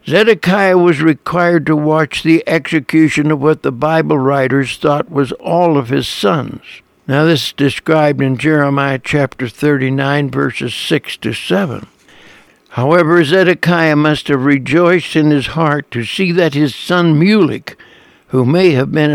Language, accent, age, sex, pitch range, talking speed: English, American, 60-79, male, 150-180 Hz, 150 wpm